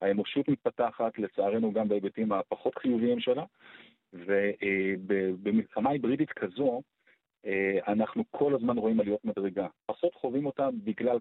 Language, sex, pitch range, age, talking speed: Hebrew, male, 100-125 Hz, 40-59, 110 wpm